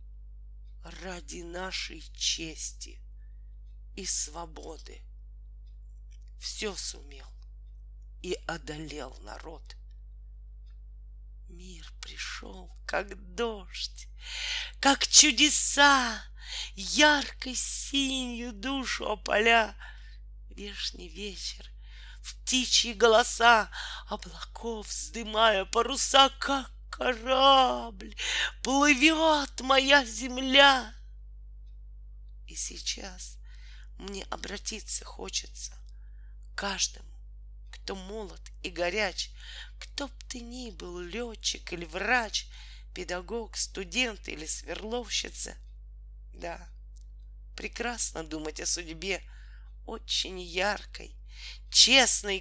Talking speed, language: 70 wpm, Russian